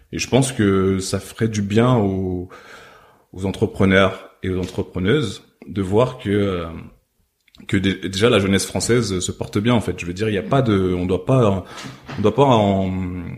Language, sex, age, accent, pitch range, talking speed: French, male, 20-39, French, 95-115 Hz, 200 wpm